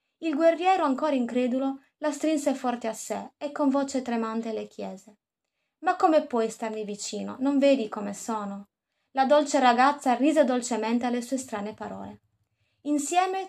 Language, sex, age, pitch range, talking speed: Italian, female, 20-39, 220-290 Hz, 150 wpm